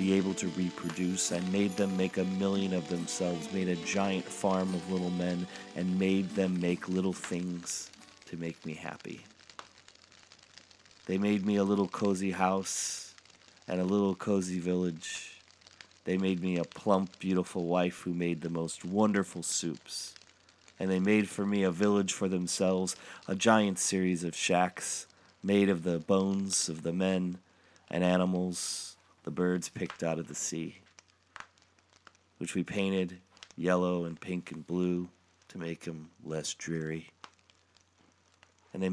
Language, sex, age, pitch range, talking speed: English, male, 30-49, 90-95 Hz, 155 wpm